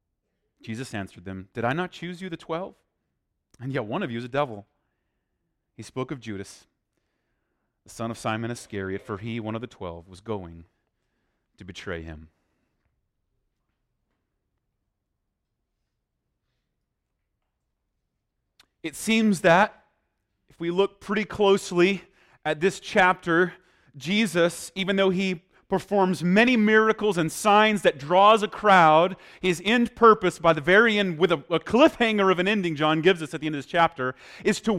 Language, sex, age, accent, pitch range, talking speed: English, male, 30-49, American, 130-195 Hz, 150 wpm